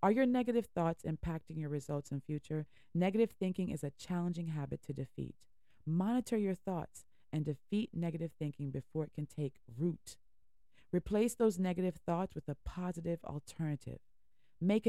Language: English